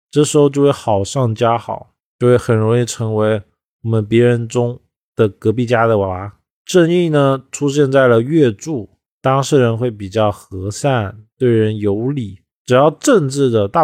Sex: male